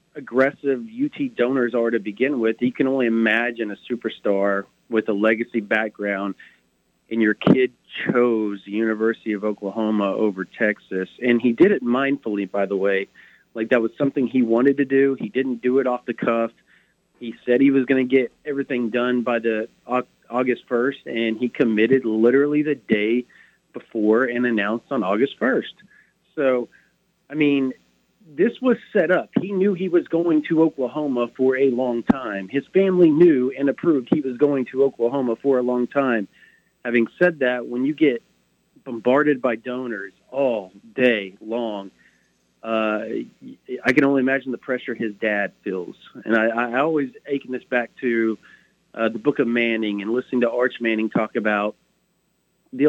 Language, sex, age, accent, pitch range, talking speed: English, male, 40-59, American, 110-135 Hz, 170 wpm